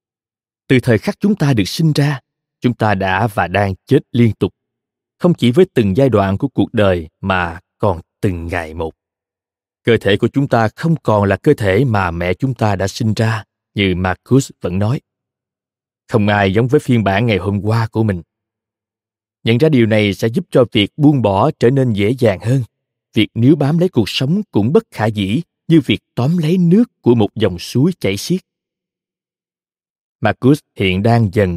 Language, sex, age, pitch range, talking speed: Vietnamese, male, 20-39, 100-130 Hz, 195 wpm